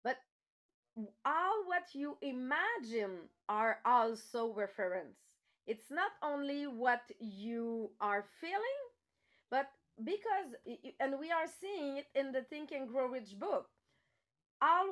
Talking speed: 115 wpm